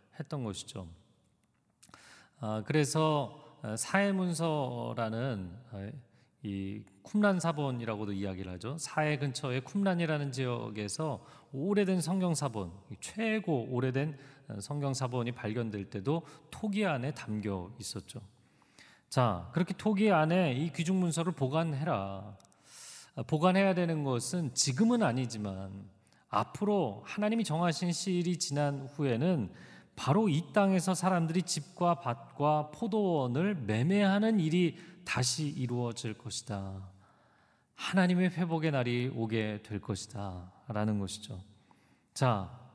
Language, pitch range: Korean, 115-175 Hz